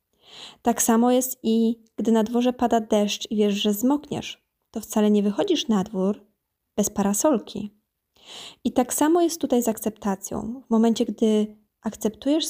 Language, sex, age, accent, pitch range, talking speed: Polish, female, 20-39, native, 210-245 Hz, 155 wpm